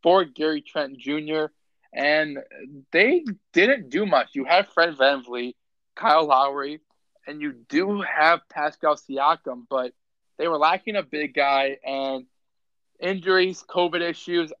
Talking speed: 130 wpm